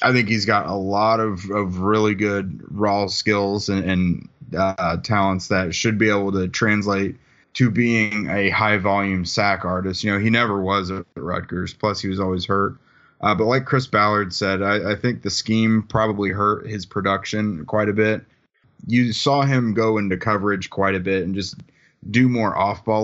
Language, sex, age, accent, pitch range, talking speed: English, male, 20-39, American, 95-110 Hz, 190 wpm